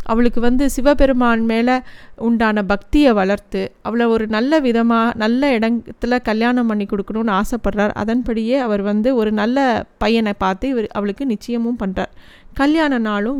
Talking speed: 130 wpm